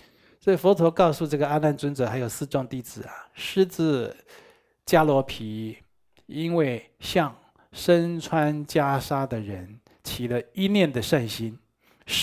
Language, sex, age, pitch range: Chinese, male, 60-79, 120-160 Hz